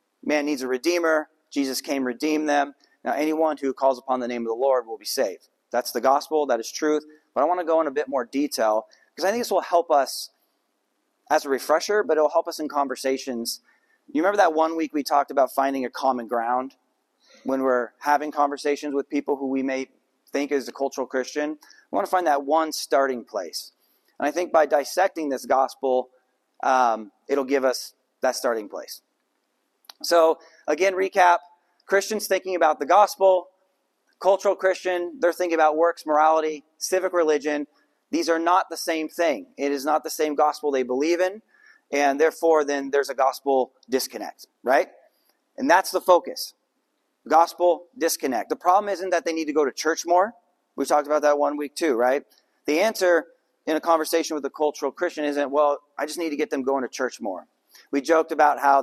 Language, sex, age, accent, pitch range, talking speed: English, male, 30-49, American, 135-170 Hz, 195 wpm